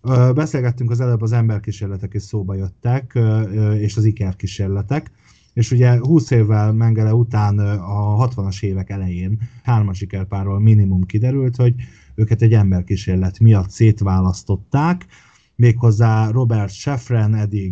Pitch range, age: 95-115 Hz, 30-49